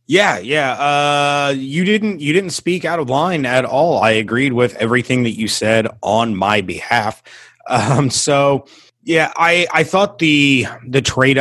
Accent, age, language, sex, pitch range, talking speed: American, 30-49, English, male, 120-140 Hz, 170 wpm